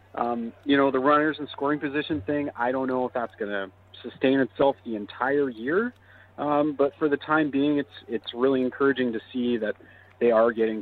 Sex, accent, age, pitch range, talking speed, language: male, American, 30-49, 105-125 Hz, 205 wpm, English